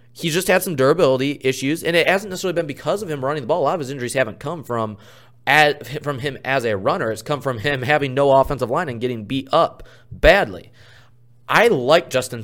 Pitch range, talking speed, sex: 115-140 Hz, 225 wpm, male